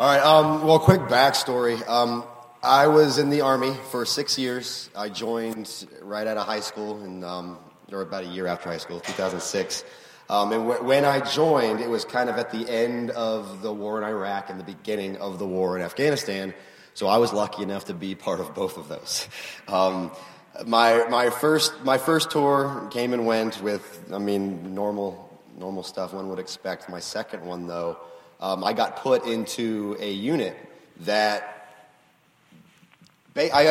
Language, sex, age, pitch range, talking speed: English, male, 30-49, 95-115 Hz, 180 wpm